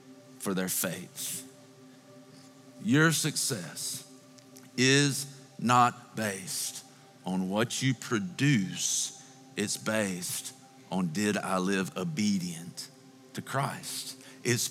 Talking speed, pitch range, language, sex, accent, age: 90 wpm, 105-130 Hz, English, male, American, 50-69